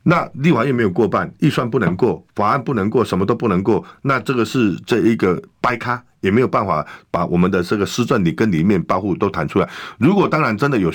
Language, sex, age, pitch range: Chinese, male, 50-69, 90-120 Hz